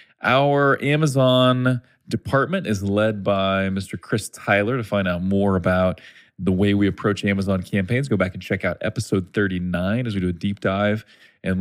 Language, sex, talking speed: English, male, 175 wpm